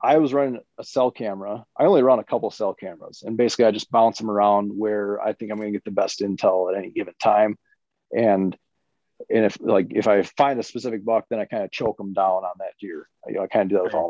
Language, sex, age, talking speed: English, male, 30-49, 270 wpm